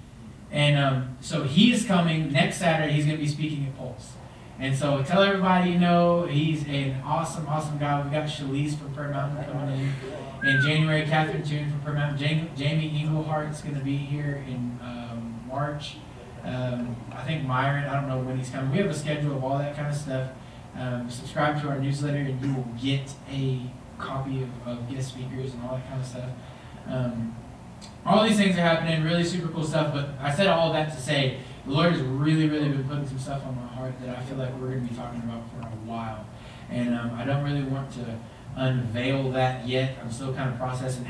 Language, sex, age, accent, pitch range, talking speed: English, male, 20-39, American, 125-150 Hz, 215 wpm